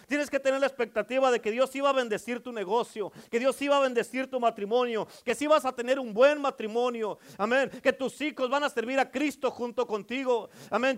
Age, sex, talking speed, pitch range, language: 40-59, male, 220 wpm, 200-265 Hz, Spanish